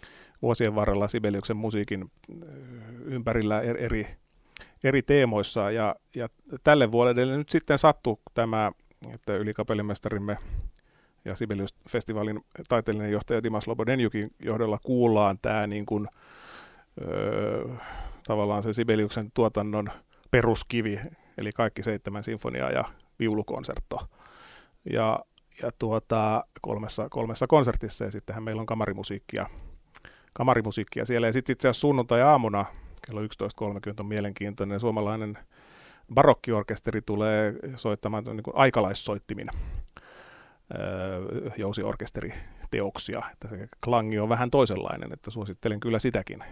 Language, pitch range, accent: Finnish, 105-120 Hz, native